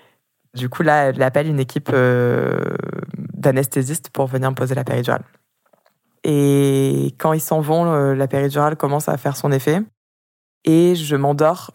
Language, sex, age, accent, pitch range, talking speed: French, female, 20-39, French, 130-155 Hz, 150 wpm